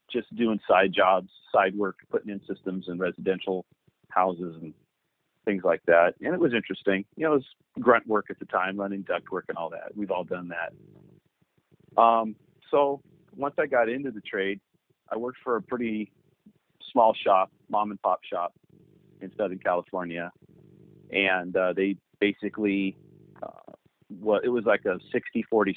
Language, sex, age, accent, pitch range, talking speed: English, male, 40-59, American, 95-125 Hz, 170 wpm